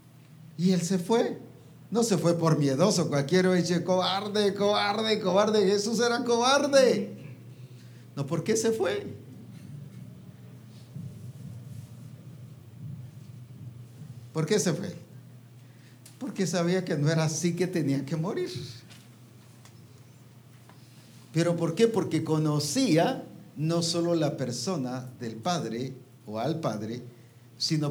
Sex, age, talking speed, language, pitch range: male, 50-69, 110 wpm, English, 125-175 Hz